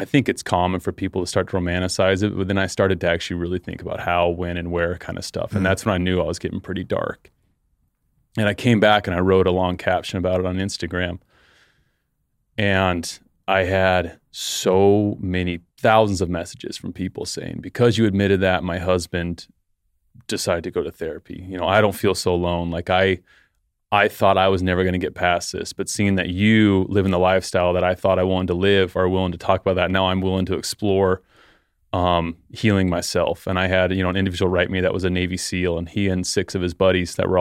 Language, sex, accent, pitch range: English, male, American, 90-95 Hz